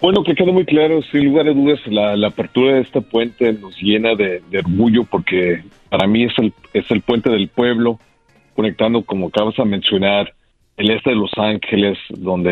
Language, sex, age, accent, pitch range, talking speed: Spanish, male, 40-59, Mexican, 100-125 Hz, 195 wpm